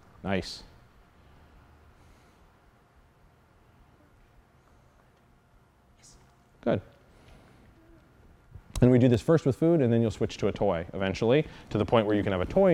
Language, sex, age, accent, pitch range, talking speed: English, male, 30-49, American, 100-135 Hz, 120 wpm